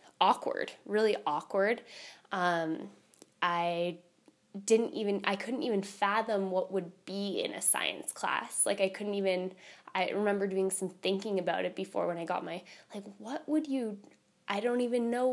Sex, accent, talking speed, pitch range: female, American, 165 wpm, 185-220 Hz